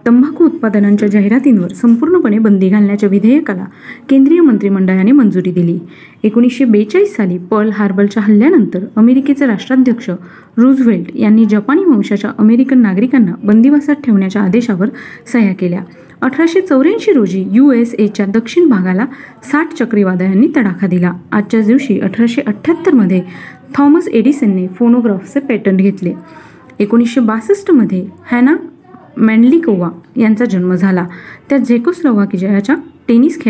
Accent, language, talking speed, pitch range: native, Marathi, 95 wpm, 200-270 Hz